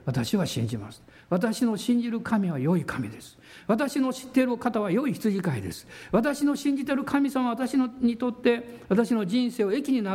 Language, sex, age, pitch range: Japanese, male, 60-79, 180-270 Hz